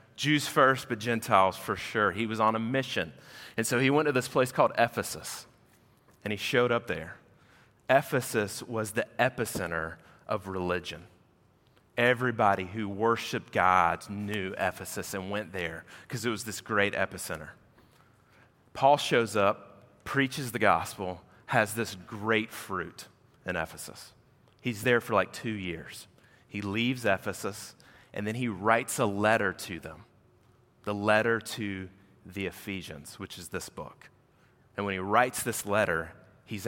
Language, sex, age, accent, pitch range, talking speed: English, male, 30-49, American, 100-125 Hz, 150 wpm